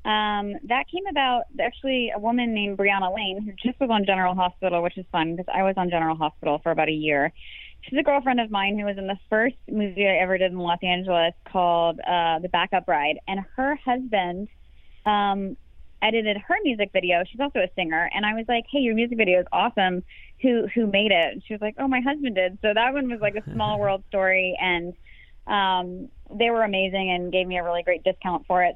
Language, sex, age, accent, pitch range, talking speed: English, female, 20-39, American, 175-215 Hz, 225 wpm